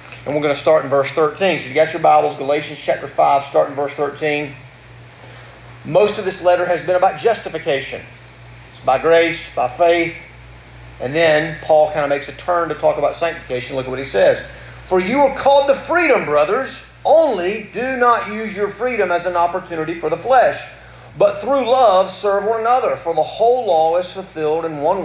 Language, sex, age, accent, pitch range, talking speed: English, male, 40-59, American, 155-245 Hz, 195 wpm